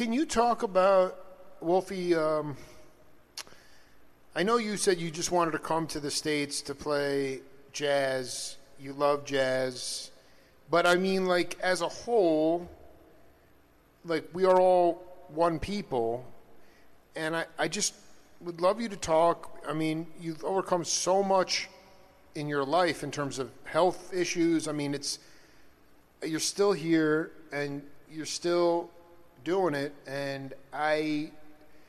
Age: 40-59